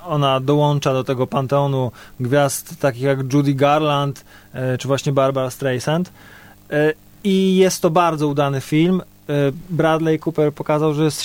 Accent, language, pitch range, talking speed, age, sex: native, Polish, 130-155 Hz, 135 wpm, 20-39, male